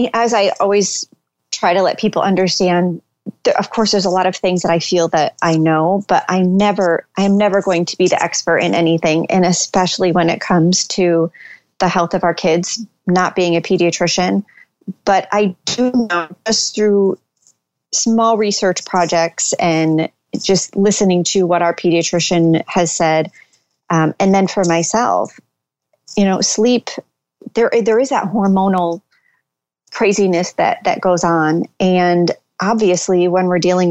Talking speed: 160 wpm